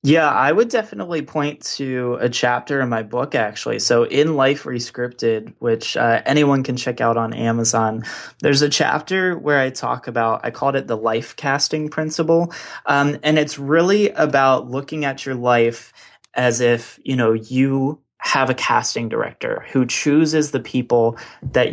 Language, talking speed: English, 170 wpm